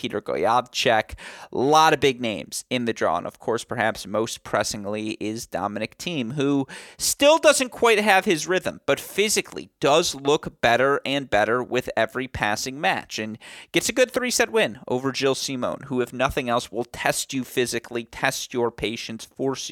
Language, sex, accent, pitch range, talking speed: English, male, American, 110-145 Hz, 180 wpm